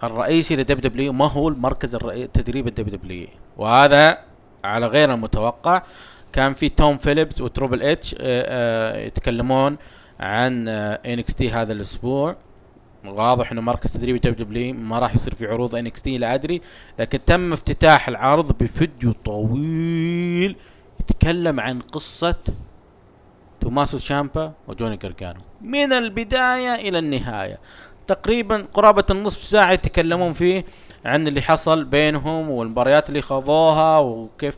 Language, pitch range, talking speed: Arabic, 120-160 Hz, 125 wpm